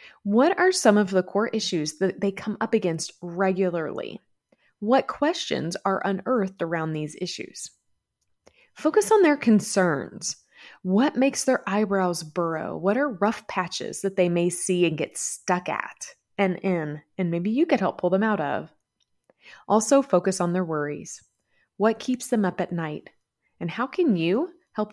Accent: American